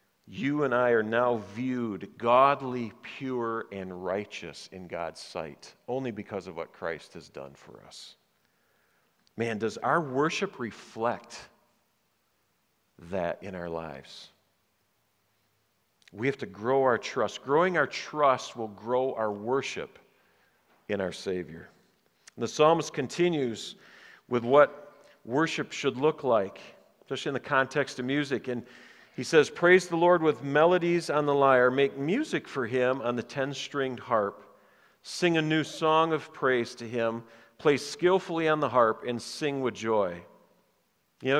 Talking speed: 145 wpm